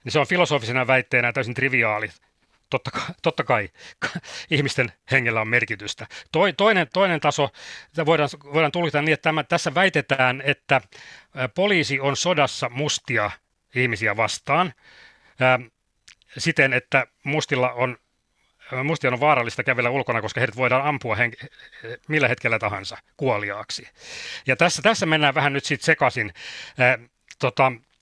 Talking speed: 135 wpm